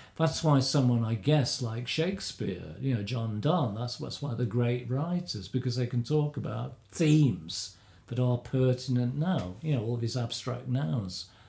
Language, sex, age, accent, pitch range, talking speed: English, male, 50-69, British, 115-140 Hz, 170 wpm